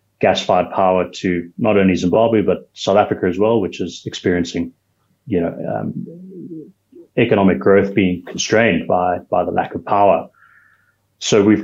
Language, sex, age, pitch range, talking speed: English, male, 30-49, 90-105 Hz, 150 wpm